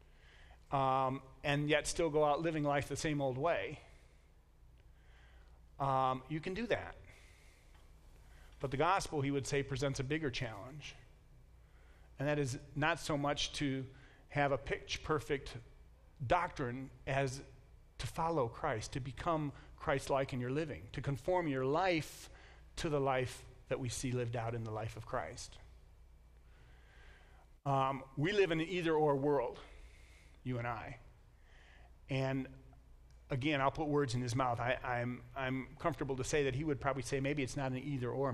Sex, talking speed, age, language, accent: male, 155 wpm, 40-59, English, American